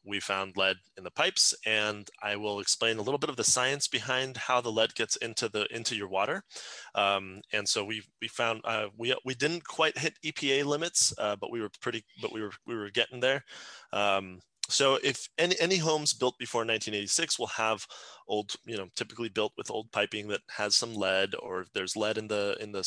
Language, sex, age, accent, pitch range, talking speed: English, male, 20-39, American, 100-120 Hz, 230 wpm